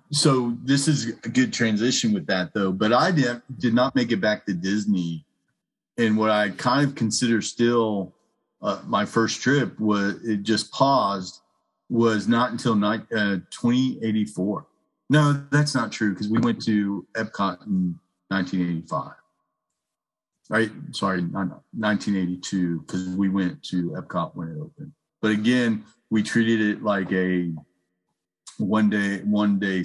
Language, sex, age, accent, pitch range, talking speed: English, male, 40-59, American, 90-115 Hz, 145 wpm